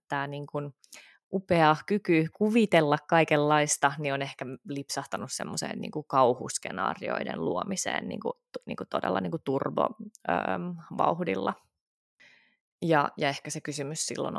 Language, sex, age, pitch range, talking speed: Finnish, female, 20-39, 145-175 Hz, 115 wpm